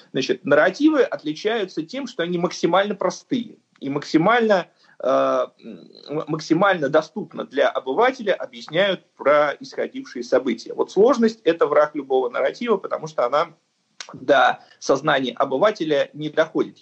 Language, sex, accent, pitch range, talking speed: Russian, male, native, 150-235 Hz, 120 wpm